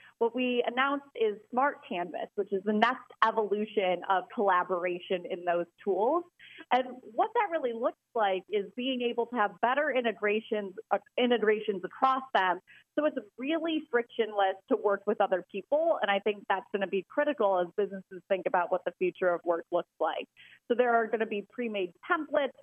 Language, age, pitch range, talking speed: English, 30-49, 195-265 Hz, 185 wpm